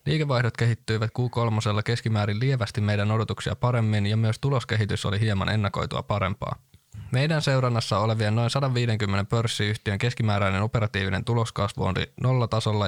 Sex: male